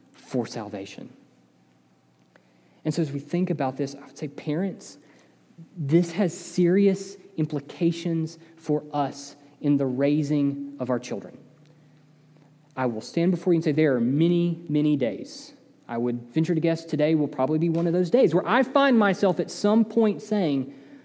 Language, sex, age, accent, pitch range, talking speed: English, male, 30-49, American, 150-225 Hz, 165 wpm